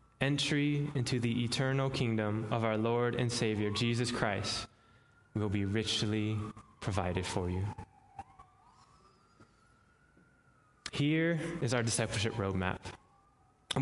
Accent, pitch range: American, 105-135 Hz